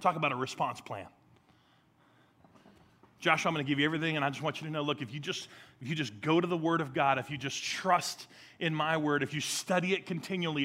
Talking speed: 240 wpm